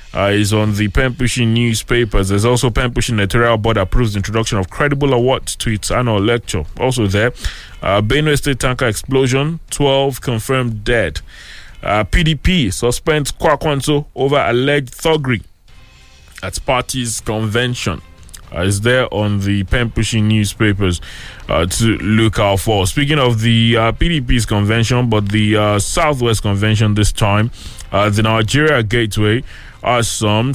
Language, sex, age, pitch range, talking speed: English, male, 20-39, 105-140 Hz, 145 wpm